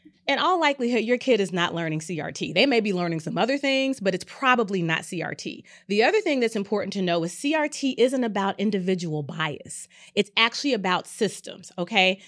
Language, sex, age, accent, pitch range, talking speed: English, female, 30-49, American, 185-230 Hz, 190 wpm